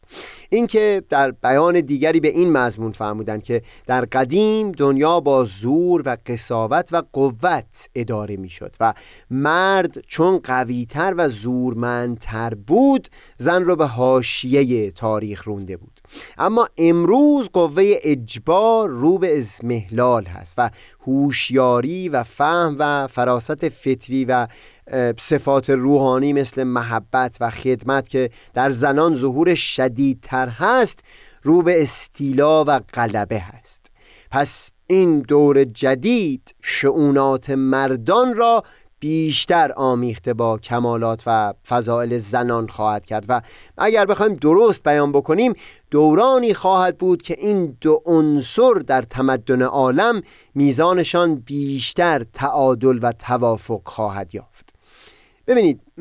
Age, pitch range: 30-49, 120-170 Hz